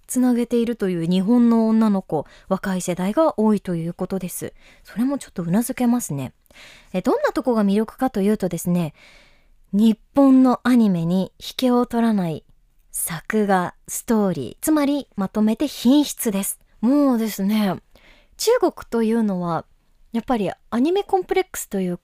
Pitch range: 185-255 Hz